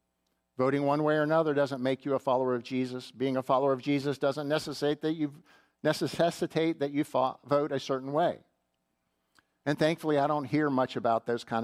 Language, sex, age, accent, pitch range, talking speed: English, male, 50-69, American, 115-165 Hz, 195 wpm